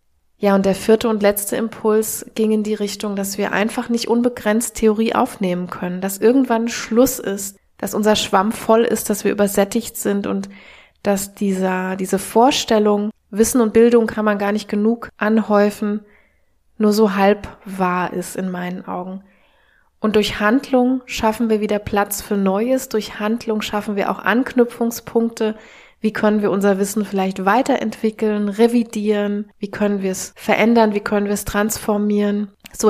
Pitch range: 195-220 Hz